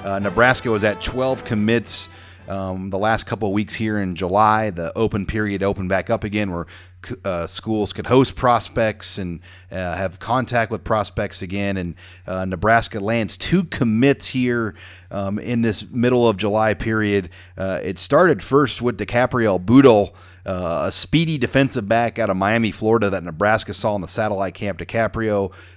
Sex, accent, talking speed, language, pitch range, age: male, American, 170 wpm, English, 95-115 Hz, 40-59